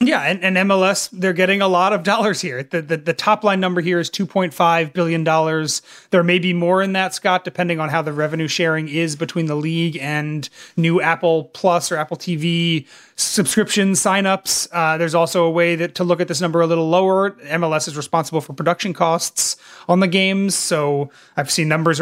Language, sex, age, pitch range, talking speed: English, male, 30-49, 160-185 Hz, 195 wpm